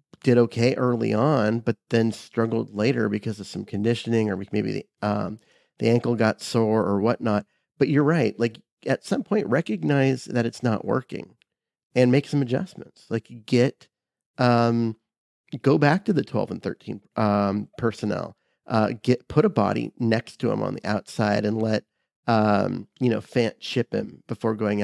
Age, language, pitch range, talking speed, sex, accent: 30-49, English, 110-125 Hz, 175 wpm, male, American